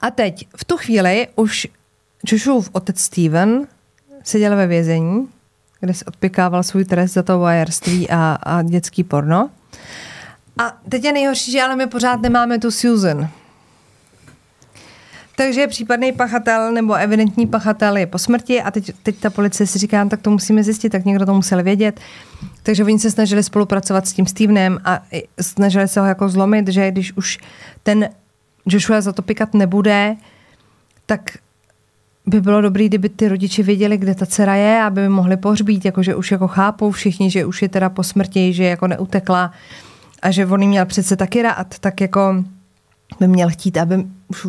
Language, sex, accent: Czech, female, native